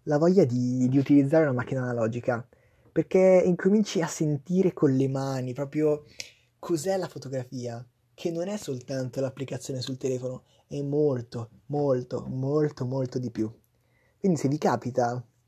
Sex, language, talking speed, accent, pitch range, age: male, Italian, 145 wpm, native, 120-140 Hz, 20-39